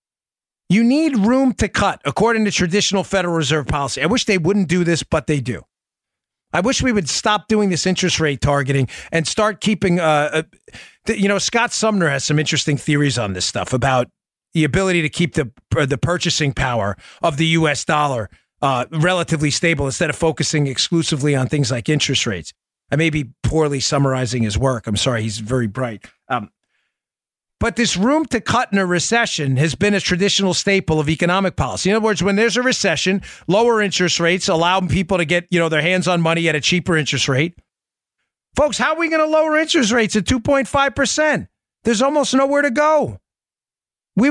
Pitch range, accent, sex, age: 150-215 Hz, American, male, 40-59